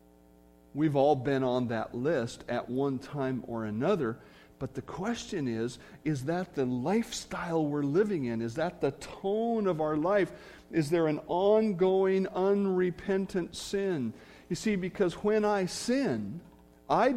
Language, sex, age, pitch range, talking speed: English, male, 50-69, 125-185 Hz, 145 wpm